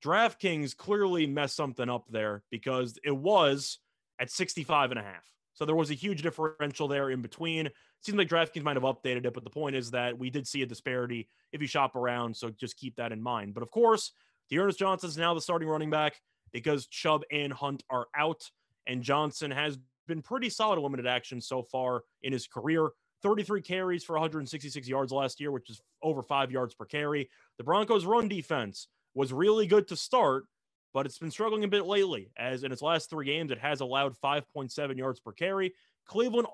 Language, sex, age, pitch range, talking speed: English, male, 20-39, 130-165 Hz, 205 wpm